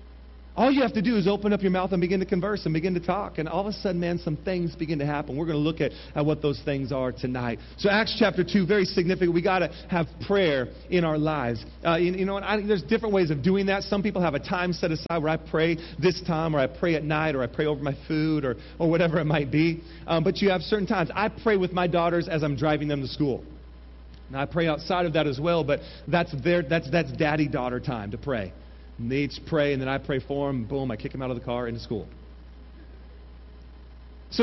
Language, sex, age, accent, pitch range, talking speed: English, male, 40-59, American, 125-180 Hz, 260 wpm